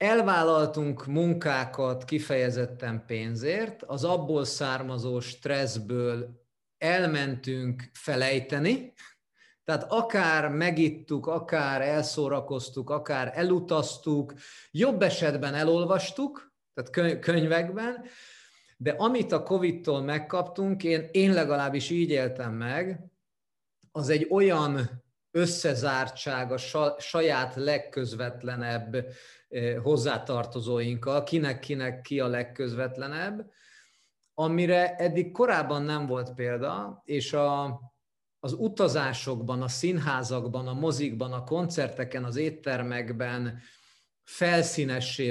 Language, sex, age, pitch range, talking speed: Hungarian, male, 30-49, 130-170 Hz, 85 wpm